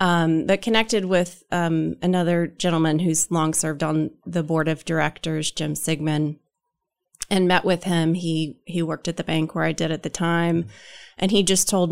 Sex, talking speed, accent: female, 185 wpm, American